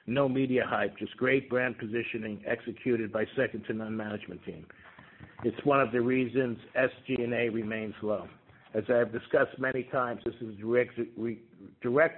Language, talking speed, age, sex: English, 160 wpm, 60-79, male